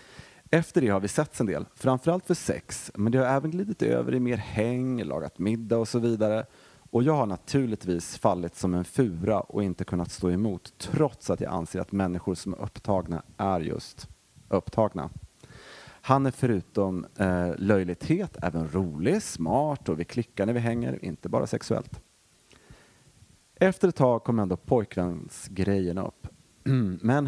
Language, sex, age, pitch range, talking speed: Swedish, male, 30-49, 90-125 Hz, 165 wpm